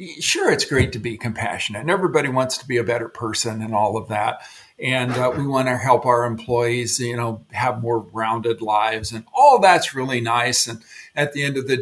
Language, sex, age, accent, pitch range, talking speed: English, male, 50-69, American, 120-155 Hz, 220 wpm